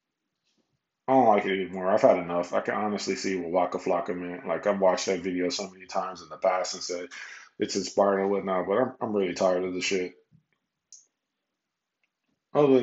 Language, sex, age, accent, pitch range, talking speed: English, male, 20-39, American, 95-120 Hz, 195 wpm